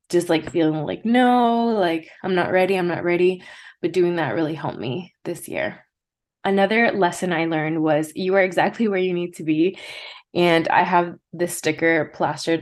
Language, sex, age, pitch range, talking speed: English, female, 20-39, 165-190 Hz, 185 wpm